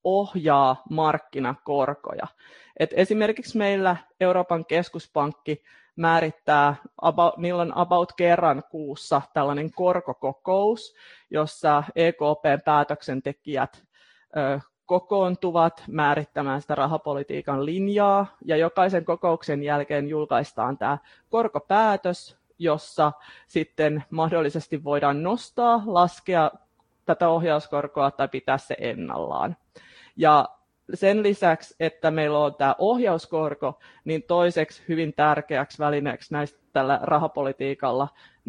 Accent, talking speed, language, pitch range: native, 90 wpm, Finnish, 145-175 Hz